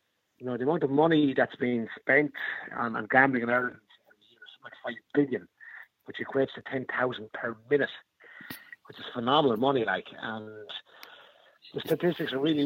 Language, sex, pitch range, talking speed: English, male, 115-135 Hz, 165 wpm